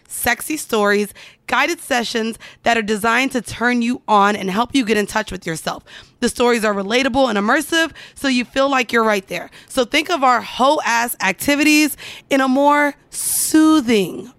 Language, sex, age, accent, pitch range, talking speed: English, female, 20-39, American, 225-275 Hz, 180 wpm